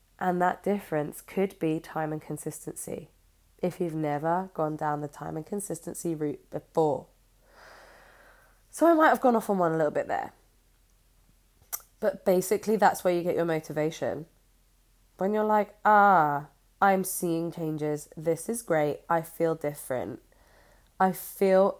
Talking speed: 150 wpm